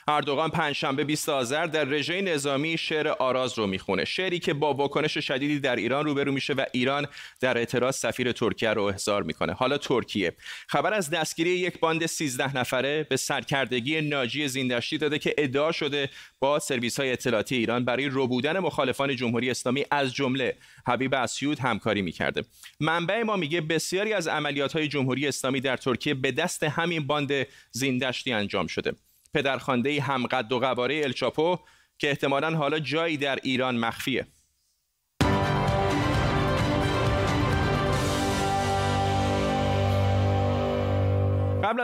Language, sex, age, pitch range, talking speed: Persian, male, 30-49, 120-150 Hz, 130 wpm